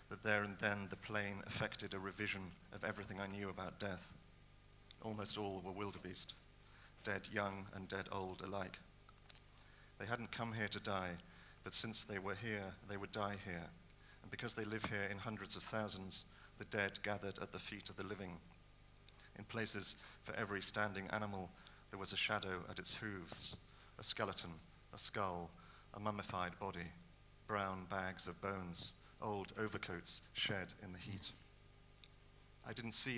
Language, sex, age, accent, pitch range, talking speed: English, male, 40-59, British, 95-105 Hz, 165 wpm